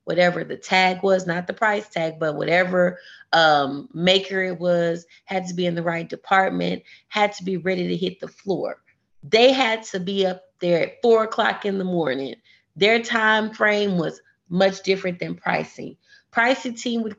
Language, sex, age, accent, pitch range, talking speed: English, female, 30-49, American, 180-230 Hz, 180 wpm